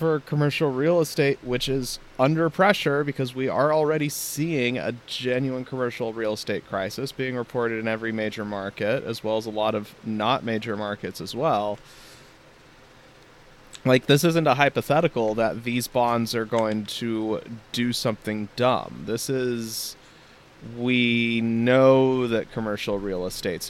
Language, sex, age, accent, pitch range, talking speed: English, male, 20-39, American, 105-130 Hz, 145 wpm